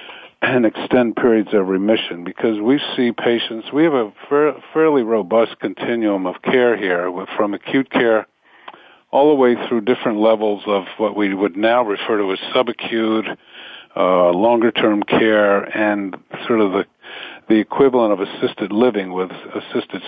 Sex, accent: male, American